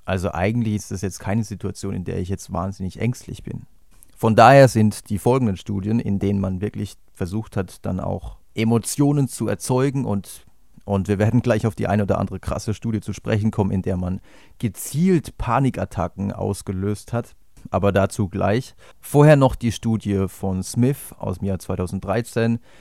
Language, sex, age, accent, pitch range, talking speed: German, male, 30-49, German, 95-120 Hz, 175 wpm